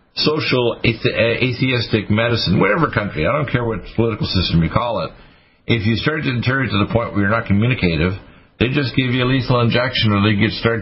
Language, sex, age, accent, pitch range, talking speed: English, male, 50-69, American, 95-120 Hz, 205 wpm